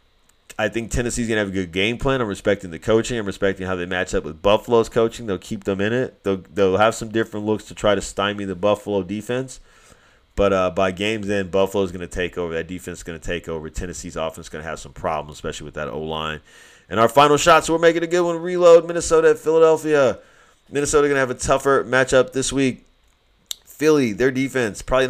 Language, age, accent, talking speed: English, 30-49, American, 230 wpm